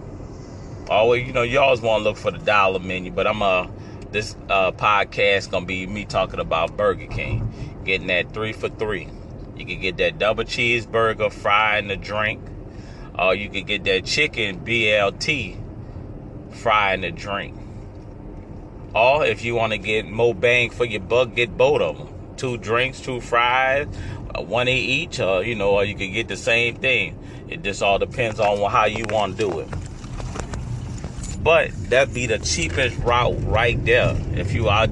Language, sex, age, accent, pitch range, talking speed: English, male, 30-49, American, 100-120 Hz, 190 wpm